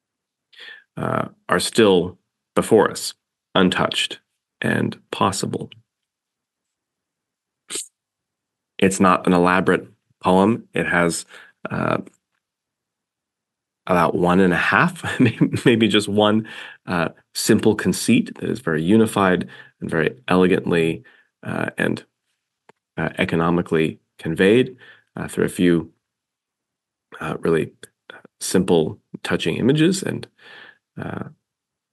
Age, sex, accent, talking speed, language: 30-49, male, American, 95 wpm, English